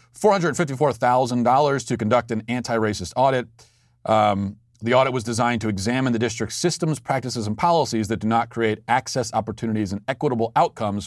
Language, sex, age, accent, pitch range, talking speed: English, male, 40-59, American, 110-125 Hz, 150 wpm